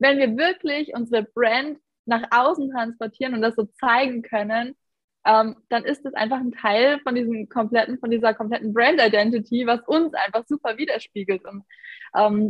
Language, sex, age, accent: German, female, 20-39, German